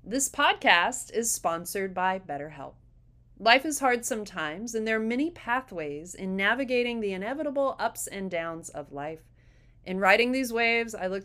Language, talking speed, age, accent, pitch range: English, 160 wpm, 30-49, American, 160-245 Hz